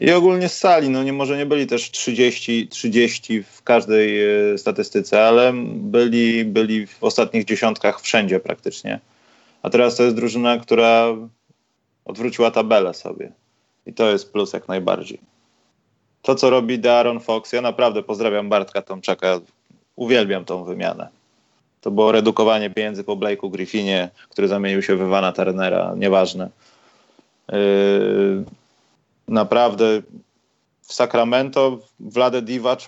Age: 20-39